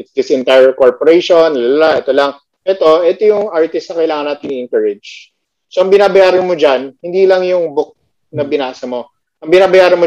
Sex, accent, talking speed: male, native, 175 wpm